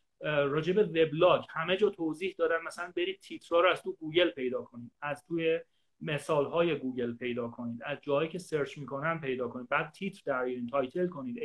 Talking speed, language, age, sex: 185 wpm, Persian, 30-49, male